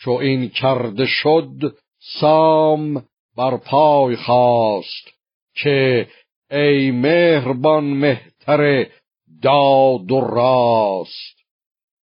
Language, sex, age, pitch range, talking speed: Persian, male, 60-79, 120-140 Hz, 75 wpm